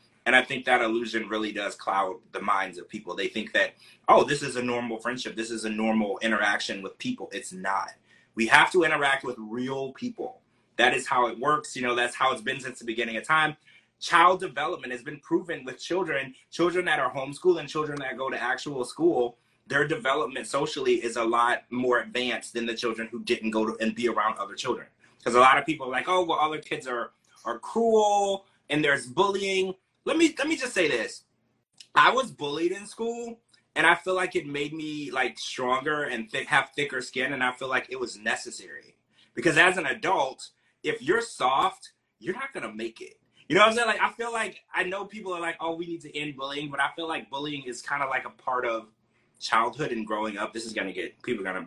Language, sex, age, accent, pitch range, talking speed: English, male, 30-49, American, 120-175 Hz, 225 wpm